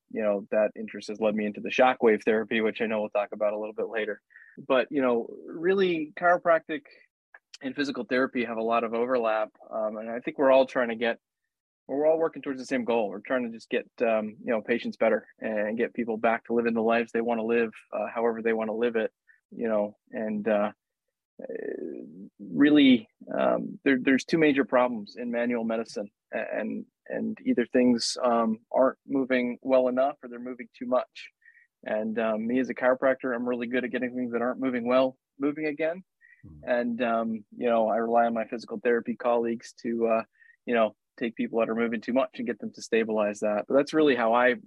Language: English